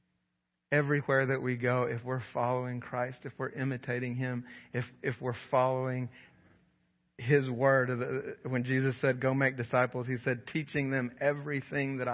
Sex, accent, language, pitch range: male, American, English, 130-155 Hz